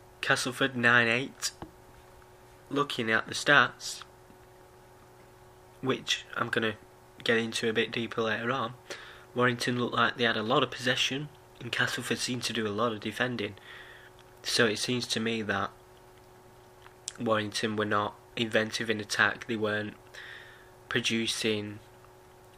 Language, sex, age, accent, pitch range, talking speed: English, male, 20-39, British, 110-125 Hz, 135 wpm